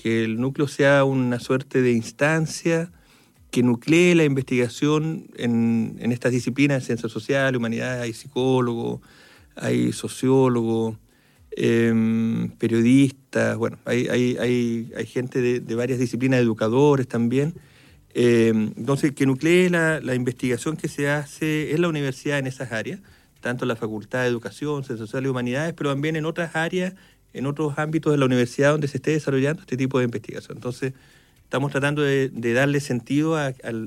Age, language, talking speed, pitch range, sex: 40-59, Spanish, 160 wpm, 120-150 Hz, male